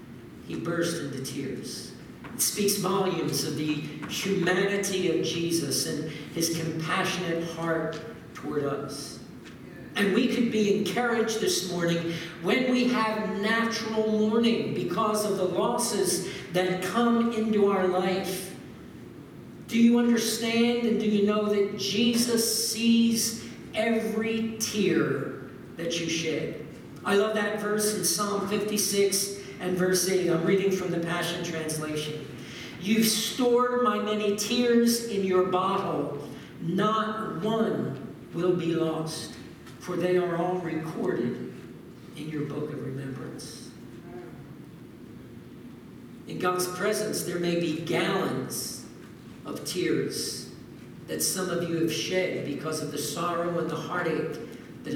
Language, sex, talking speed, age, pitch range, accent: English, male, 125 wpm, 50-69, 165-215 Hz, American